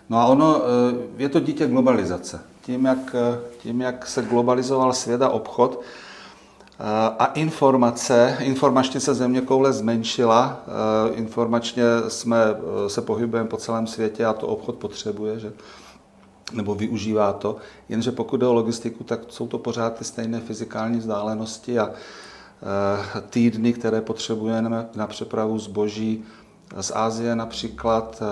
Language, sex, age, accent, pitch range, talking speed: Czech, male, 40-59, native, 110-125 Hz, 130 wpm